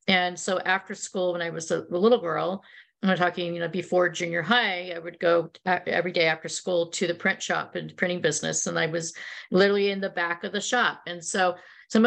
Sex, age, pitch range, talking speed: female, 50-69, 170-195 Hz, 225 wpm